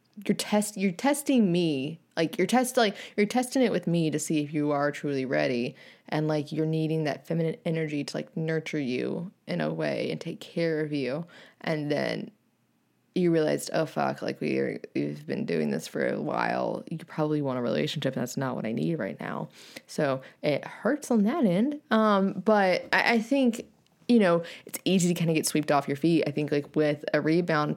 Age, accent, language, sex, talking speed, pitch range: 20-39, American, English, female, 210 wpm, 155-200 Hz